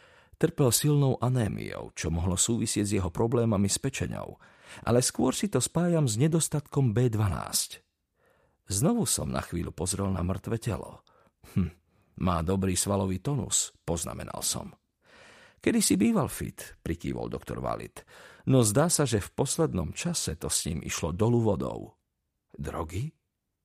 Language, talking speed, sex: Slovak, 140 wpm, male